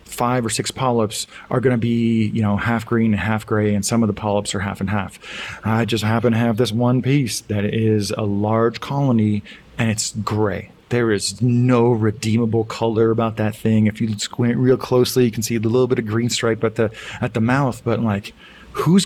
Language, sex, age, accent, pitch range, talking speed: English, male, 30-49, American, 105-125 Hz, 215 wpm